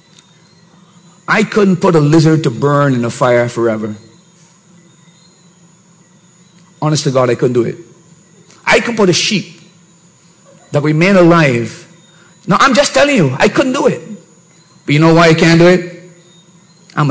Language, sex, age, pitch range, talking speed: English, male, 50-69, 170-210 Hz, 155 wpm